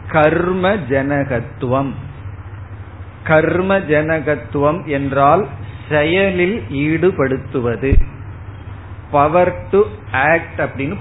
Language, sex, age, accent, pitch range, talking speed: Tamil, male, 40-59, native, 115-165 Hz, 55 wpm